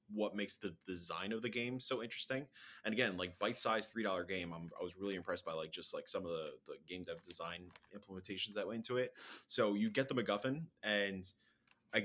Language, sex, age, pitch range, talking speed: English, male, 20-39, 95-125 Hz, 220 wpm